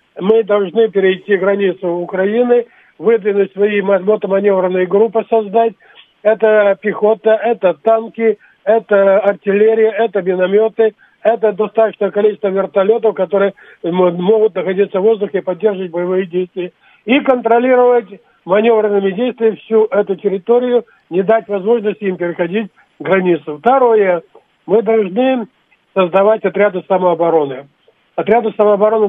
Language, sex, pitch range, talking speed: Russian, male, 185-220 Hz, 105 wpm